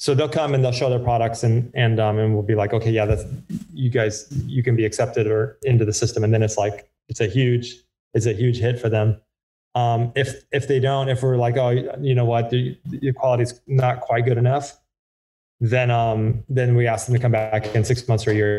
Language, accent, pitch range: English, American, 115-130 Hz